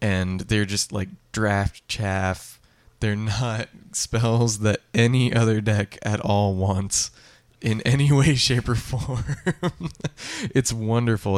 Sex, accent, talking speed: male, American, 125 wpm